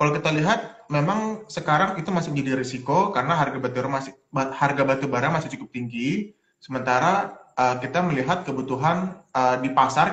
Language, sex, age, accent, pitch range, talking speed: Indonesian, male, 20-39, native, 135-180 Hz, 130 wpm